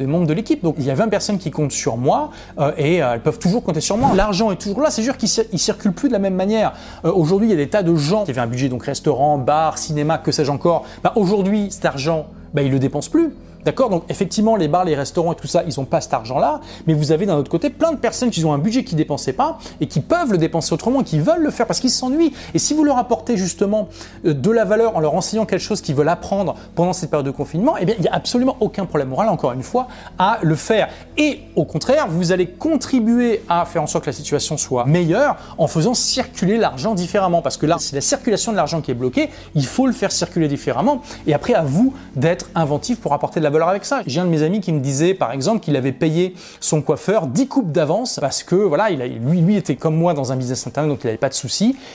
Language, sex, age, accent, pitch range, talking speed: French, male, 30-49, French, 150-215 Hz, 265 wpm